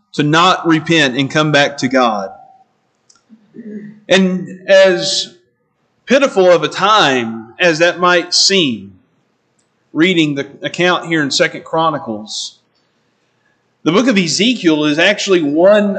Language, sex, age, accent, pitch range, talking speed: English, male, 40-59, American, 155-200 Hz, 120 wpm